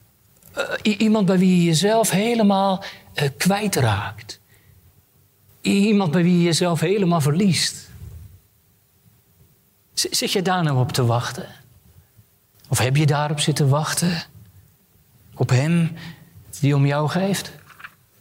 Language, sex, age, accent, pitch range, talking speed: Dutch, male, 40-59, Dutch, 125-180 Hz, 110 wpm